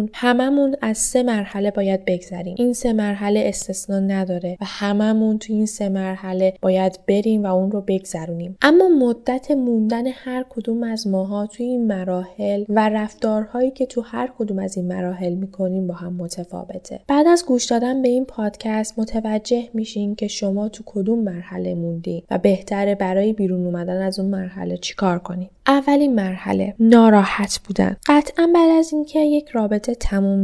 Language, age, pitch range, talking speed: Persian, 10-29, 190-235 Hz, 165 wpm